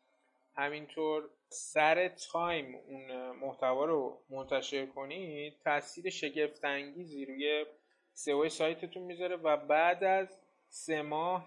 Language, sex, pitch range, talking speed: Persian, male, 140-180 Hz, 105 wpm